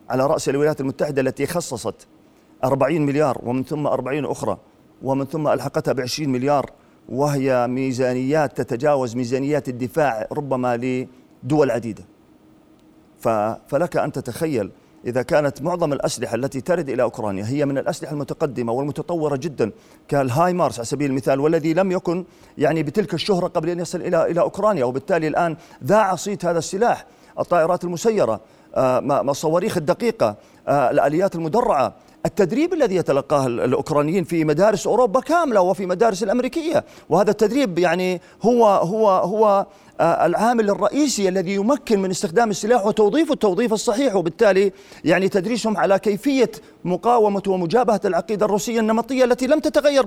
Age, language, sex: 40-59, Arabic, male